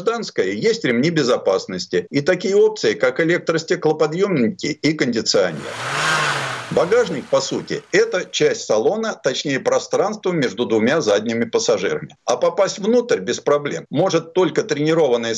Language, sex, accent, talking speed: Russian, male, native, 115 wpm